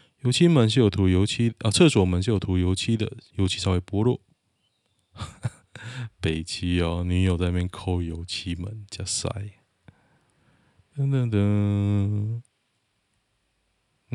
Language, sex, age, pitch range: Chinese, male, 20-39, 90-115 Hz